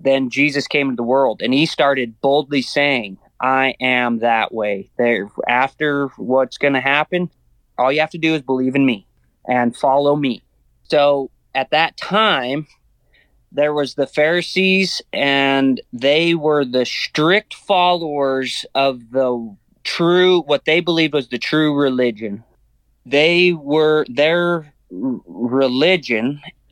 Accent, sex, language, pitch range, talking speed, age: American, male, English, 125-150 Hz, 135 wpm, 30-49